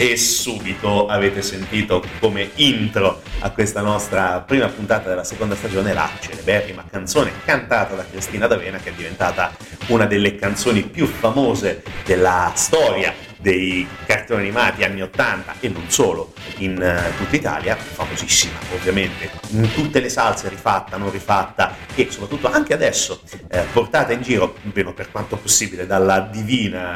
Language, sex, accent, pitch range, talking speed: Italian, male, native, 95-115 Hz, 145 wpm